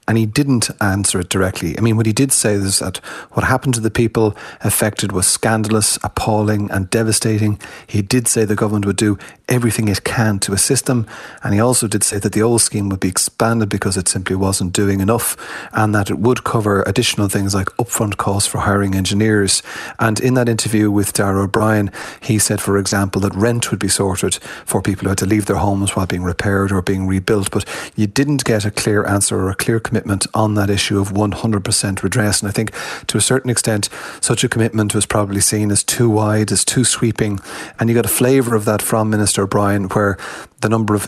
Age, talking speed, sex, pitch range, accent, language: 30-49, 220 wpm, male, 100-110 Hz, Irish, English